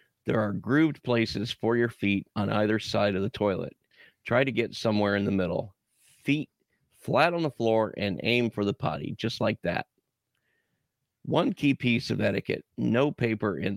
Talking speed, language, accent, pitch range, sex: 180 wpm, English, American, 100-120 Hz, male